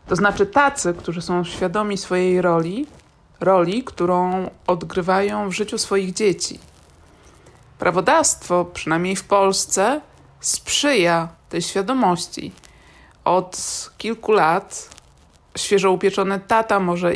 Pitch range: 175-205 Hz